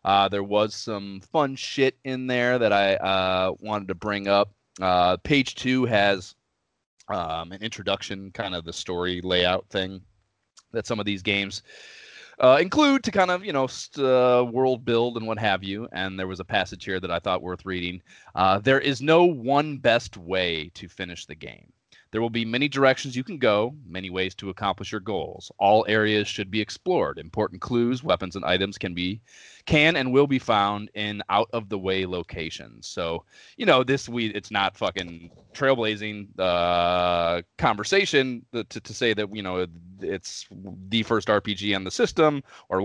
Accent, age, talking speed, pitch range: American, 30-49, 180 wpm, 95-125 Hz